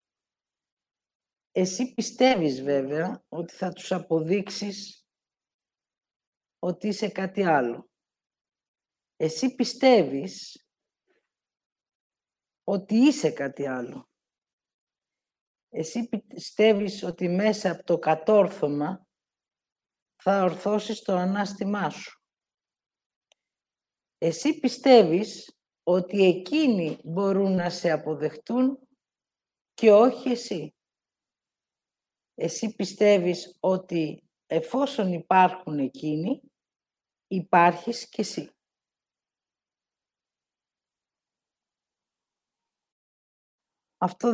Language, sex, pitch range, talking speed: English, female, 170-225 Hz, 70 wpm